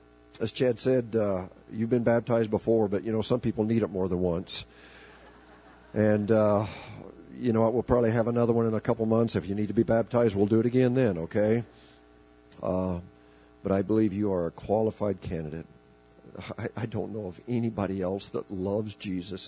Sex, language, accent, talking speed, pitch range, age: male, English, American, 190 wpm, 75-115 Hz, 50-69